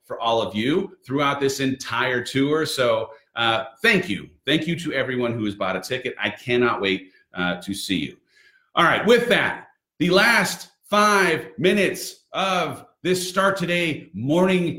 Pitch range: 120-160 Hz